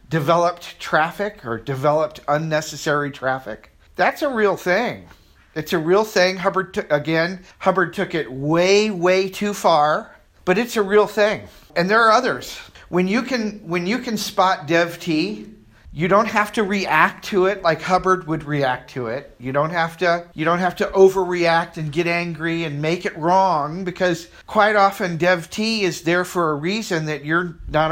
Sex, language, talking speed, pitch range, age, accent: male, English, 175 wpm, 155-195 Hz, 50-69, American